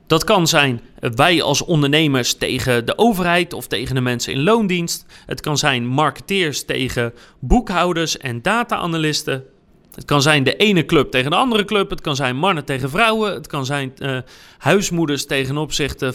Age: 40-59